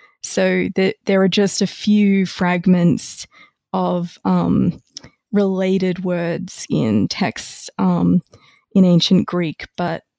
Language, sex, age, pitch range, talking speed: English, female, 20-39, 175-205 Hz, 110 wpm